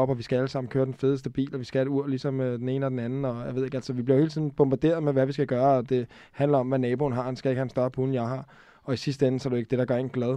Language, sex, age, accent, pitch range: Danish, male, 20-39, native, 125-145 Hz